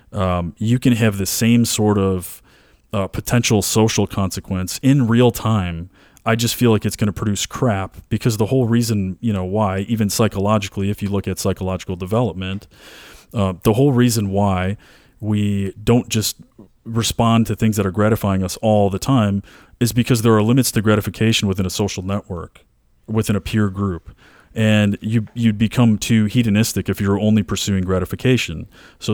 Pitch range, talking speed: 95-115 Hz, 175 wpm